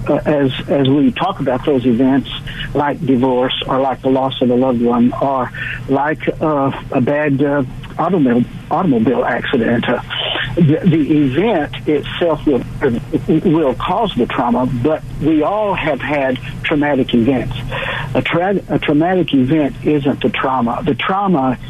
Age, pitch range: 60-79, 125-150 Hz